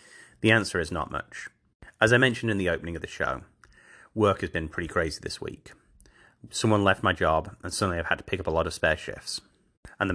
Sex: male